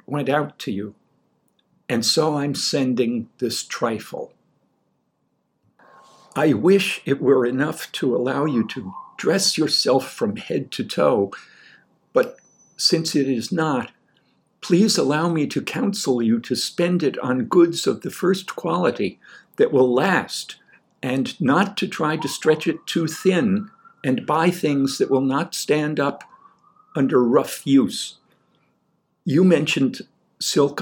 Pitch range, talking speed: 140-200 Hz, 140 wpm